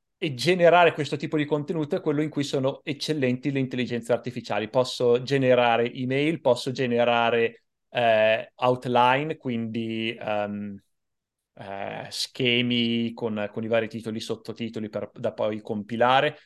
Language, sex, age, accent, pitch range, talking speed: Italian, male, 30-49, native, 120-140 Hz, 130 wpm